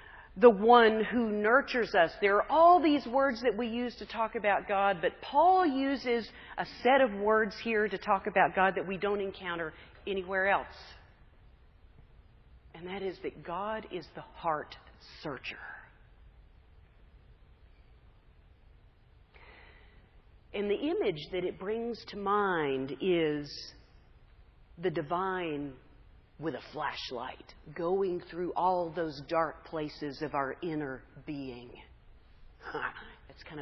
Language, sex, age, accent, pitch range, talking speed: English, female, 40-59, American, 140-205 Hz, 125 wpm